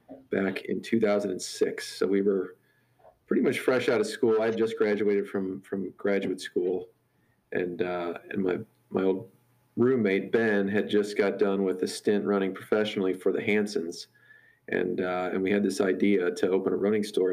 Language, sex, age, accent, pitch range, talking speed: English, male, 40-59, American, 100-120 Hz, 180 wpm